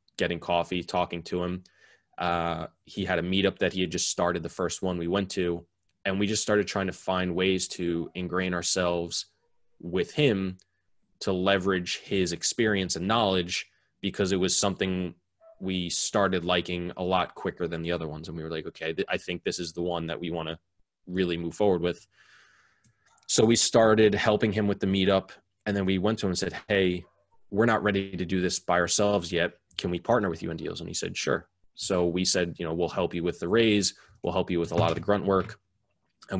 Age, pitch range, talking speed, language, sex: 20-39, 85-100 Hz, 220 wpm, English, male